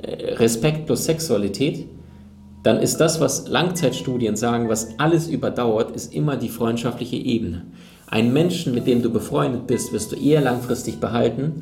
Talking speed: 150 wpm